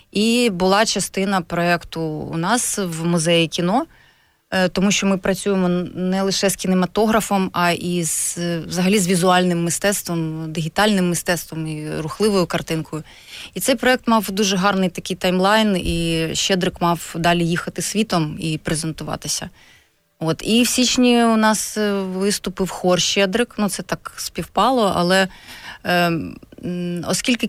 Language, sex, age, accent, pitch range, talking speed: Ukrainian, female, 20-39, native, 170-205 Hz, 135 wpm